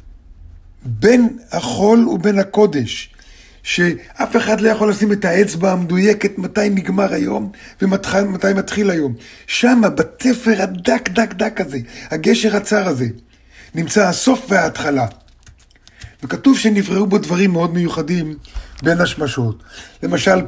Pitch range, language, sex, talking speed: 145-205 Hz, Hebrew, male, 120 wpm